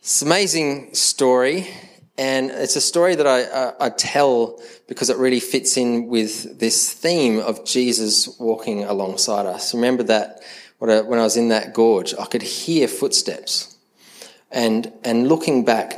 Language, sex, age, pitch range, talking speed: English, male, 20-39, 105-125 Hz, 165 wpm